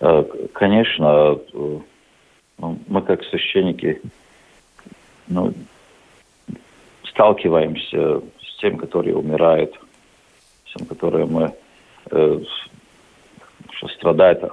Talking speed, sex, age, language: 60 wpm, male, 50-69, Russian